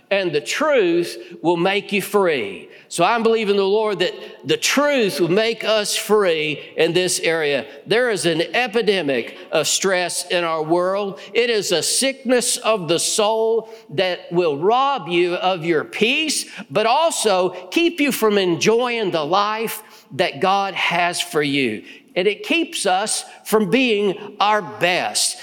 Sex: male